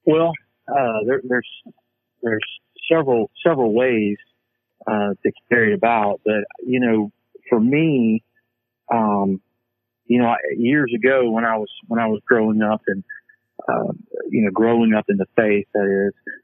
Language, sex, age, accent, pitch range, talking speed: English, male, 40-59, American, 105-120 Hz, 155 wpm